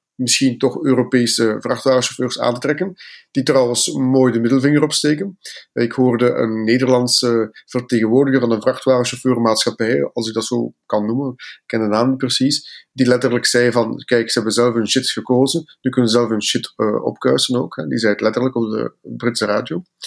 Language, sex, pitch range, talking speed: Dutch, male, 120-145 Hz, 180 wpm